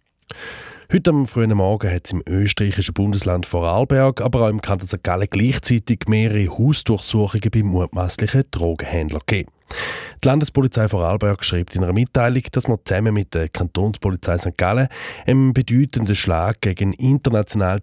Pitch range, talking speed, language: 90-120 Hz, 140 wpm, German